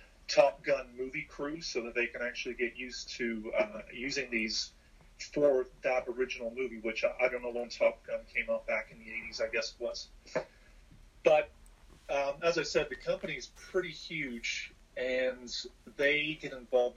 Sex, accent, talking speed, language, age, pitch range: male, American, 175 wpm, English, 40-59, 120-150 Hz